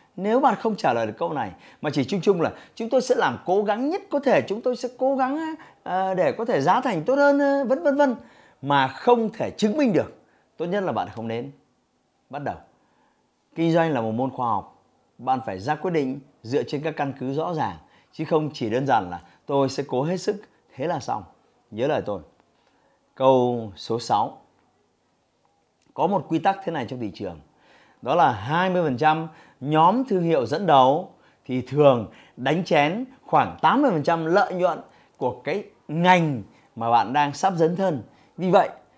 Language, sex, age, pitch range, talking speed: Vietnamese, male, 30-49, 135-210 Hz, 195 wpm